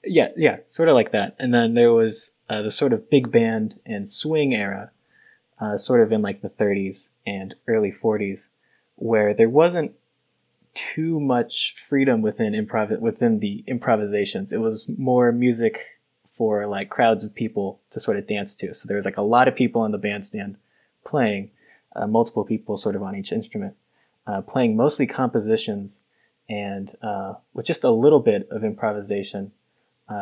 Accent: American